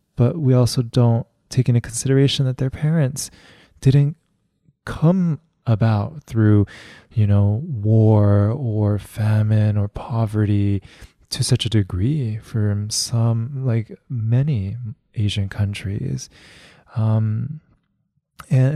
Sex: male